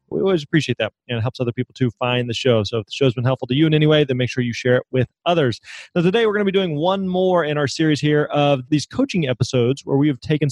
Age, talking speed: 20-39, 310 wpm